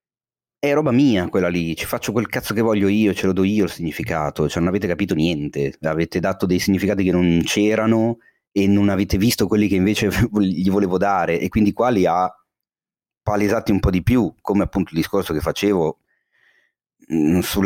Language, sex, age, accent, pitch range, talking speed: Italian, male, 30-49, native, 90-115 Hz, 190 wpm